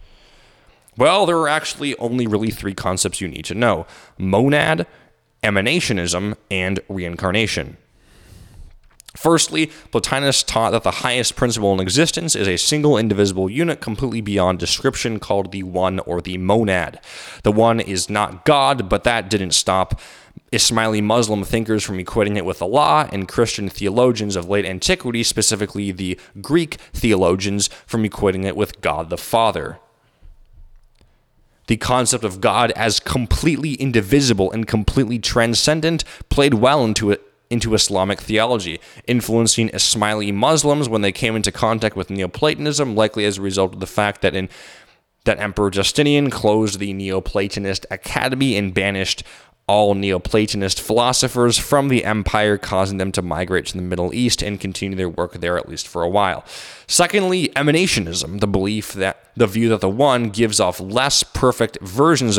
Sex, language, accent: male, English, American